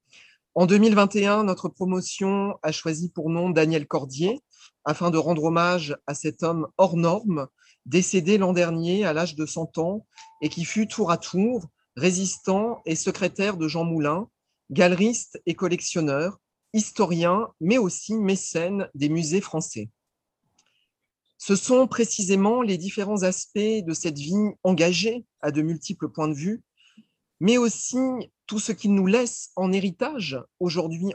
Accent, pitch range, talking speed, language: French, 160-205 Hz, 145 wpm, French